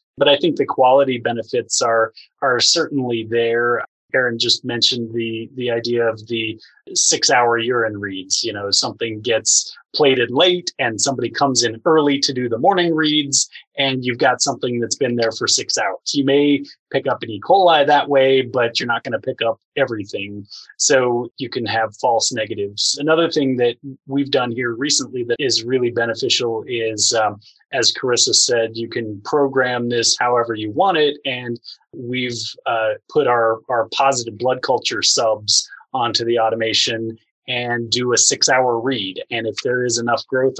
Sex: male